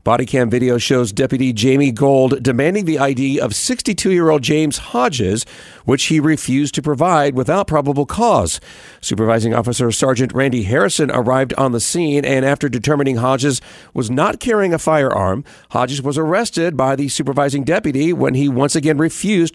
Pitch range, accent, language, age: 125-160 Hz, American, English, 40-59